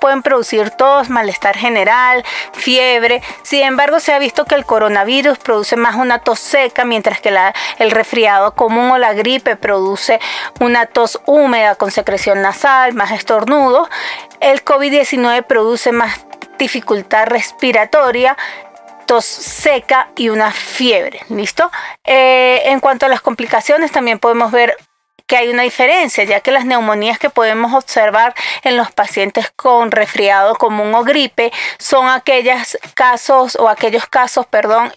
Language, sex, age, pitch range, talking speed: Spanish, female, 30-49, 215-270 Hz, 140 wpm